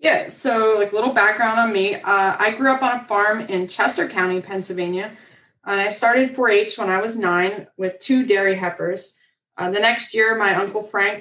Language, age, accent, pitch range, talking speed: English, 20-39, American, 180-205 Hz, 200 wpm